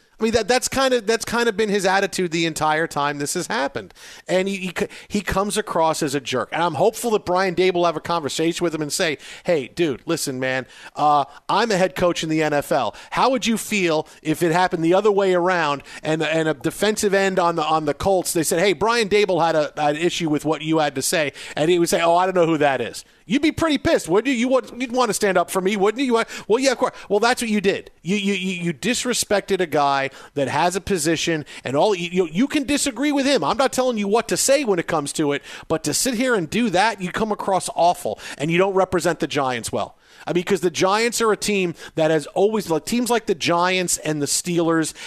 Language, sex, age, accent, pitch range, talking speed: English, male, 40-59, American, 160-210 Hz, 255 wpm